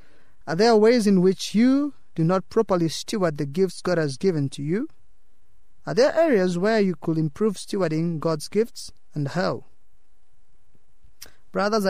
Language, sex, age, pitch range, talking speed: English, male, 20-39, 150-190 Hz, 150 wpm